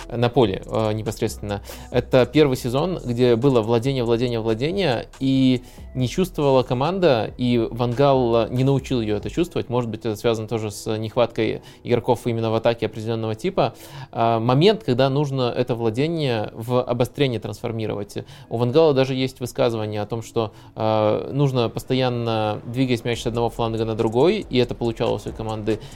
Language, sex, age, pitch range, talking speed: Russian, male, 20-39, 115-135 Hz, 155 wpm